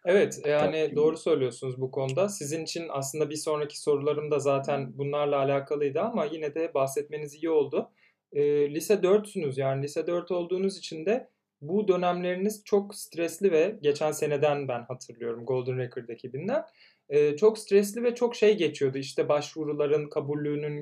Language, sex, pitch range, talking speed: Turkish, male, 140-200 Hz, 155 wpm